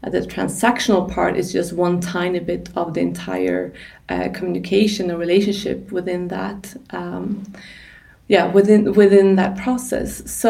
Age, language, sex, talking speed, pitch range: 20-39, English, female, 135 wpm, 180-205 Hz